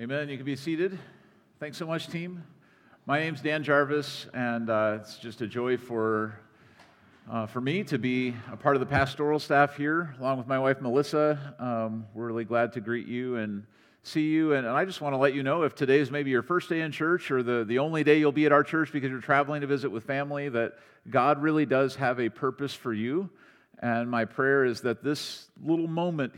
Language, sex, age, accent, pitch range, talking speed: English, male, 40-59, American, 120-150 Hz, 225 wpm